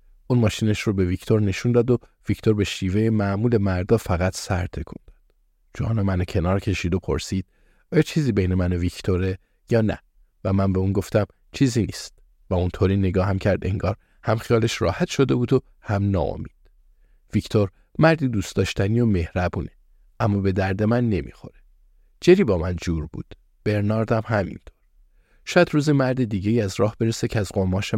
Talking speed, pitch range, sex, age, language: 170 wpm, 90-115 Hz, male, 50-69, Persian